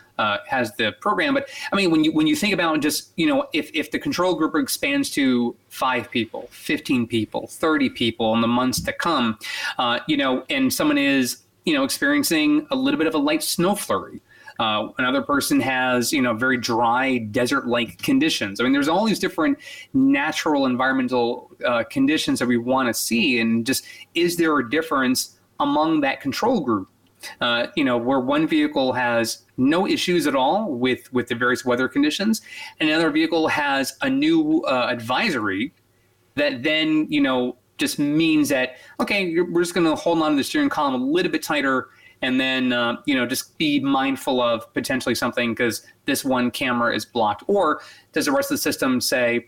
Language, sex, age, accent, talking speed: English, male, 30-49, American, 195 wpm